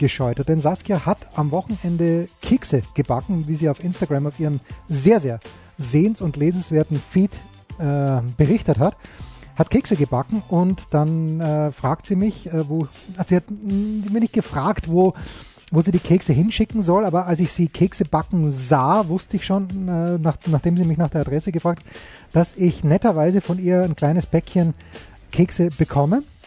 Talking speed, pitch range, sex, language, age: 170 wpm, 150-185 Hz, male, German, 30-49